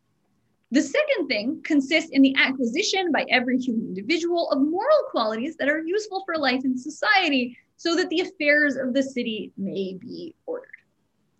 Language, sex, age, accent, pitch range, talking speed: English, female, 20-39, American, 245-330 Hz, 165 wpm